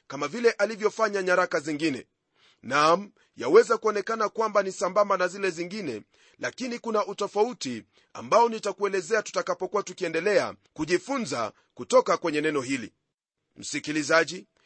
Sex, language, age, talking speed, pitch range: male, Swahili, 40-59, 115 wpm, 175-220 Hz